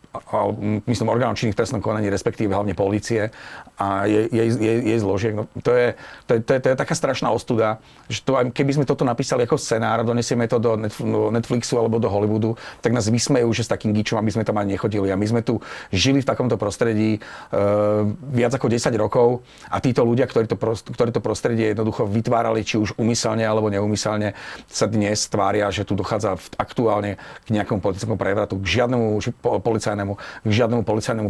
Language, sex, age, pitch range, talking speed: Slovak, male, 40-59, 100-115 Hz, 190 wpm